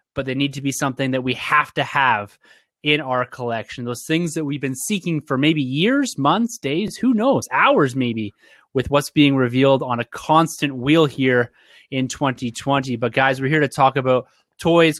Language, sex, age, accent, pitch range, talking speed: English, male, 30-49, American, 125-155 Hz, 190 wpm